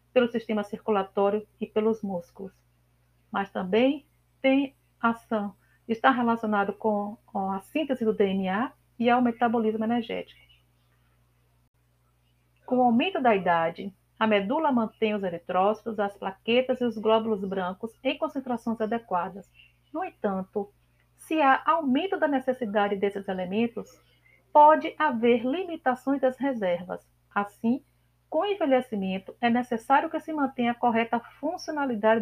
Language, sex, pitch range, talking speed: Portuguese, female, 190-250 Hz, 125 wpm